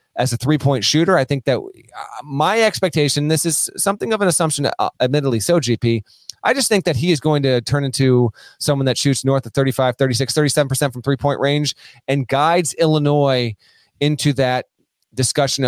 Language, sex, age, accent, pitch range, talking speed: English, male, 30-49, American, 120-150 Hz, 170 wpm